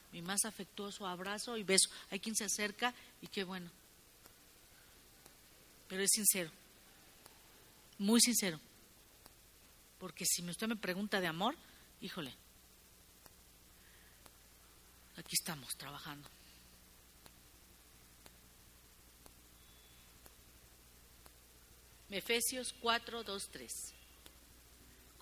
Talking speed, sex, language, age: 80 wpm, female, English, 50-69